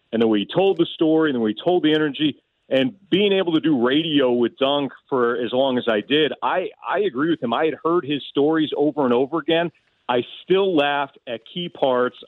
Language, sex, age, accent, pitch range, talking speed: English, male, 40-59, American, 115-145 Hz, 220 wpm